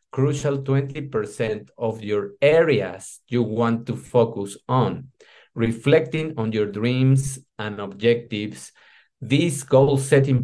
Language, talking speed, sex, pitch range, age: English, 115 wpm, male, 105-135 Hz, 50-69